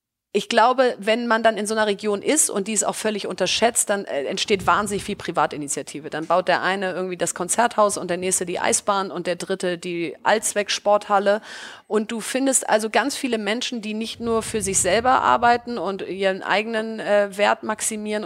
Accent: German